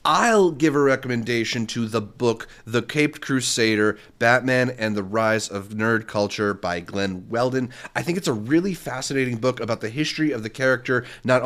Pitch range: 110-140 Hz